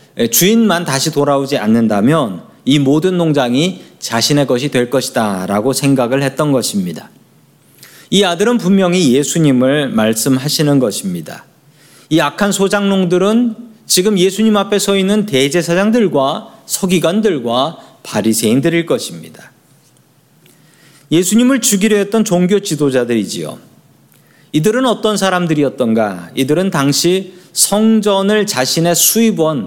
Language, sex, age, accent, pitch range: Korean, male, 40-59, native, 140-200 Hz